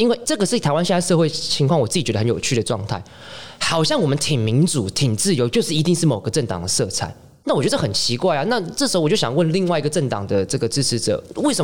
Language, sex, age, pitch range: Chinese, male, 20-39, 115-155 Hz